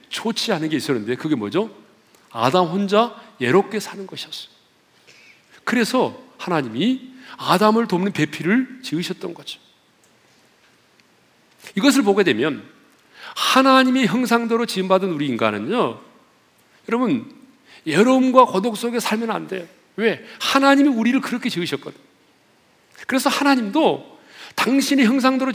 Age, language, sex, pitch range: 40-59, Korean, male, 200-265 Hz